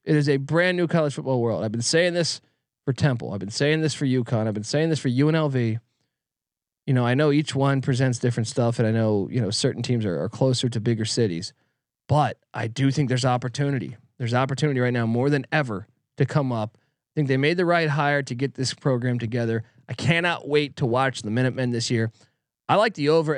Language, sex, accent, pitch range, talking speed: English, male, American, 120-160 Hz, 230 wpm